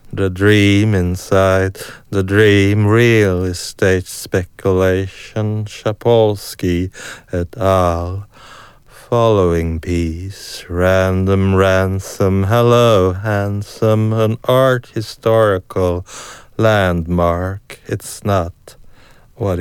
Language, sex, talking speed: English, male, 75 wpm